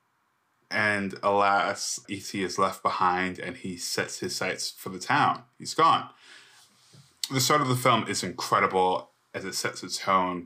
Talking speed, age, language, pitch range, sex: 160 wpm, 20-39, English, 90-105 Hz, male